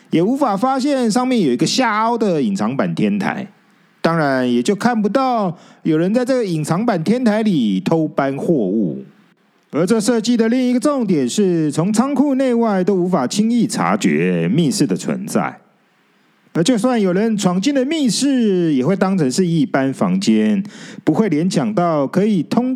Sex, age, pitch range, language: male, 40-59, 185-245 Hz, Chinese